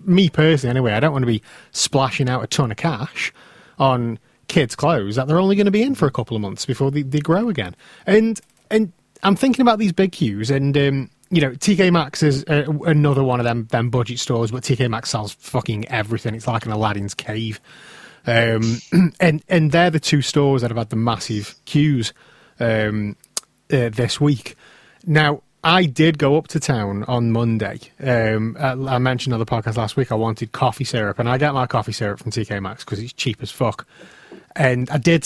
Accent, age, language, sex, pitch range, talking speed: British, 30-49, English, male, 115-155 Hz, 210 wpm